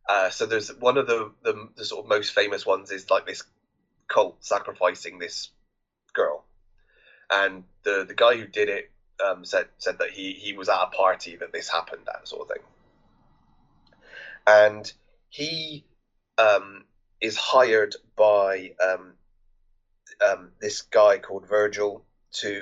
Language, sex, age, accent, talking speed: English, male, 20-39, British, 150 wpm